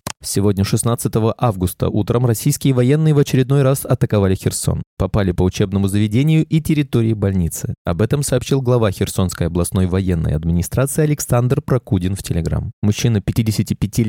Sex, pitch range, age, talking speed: male, 100-135 Hz, 20-39, 135 wpm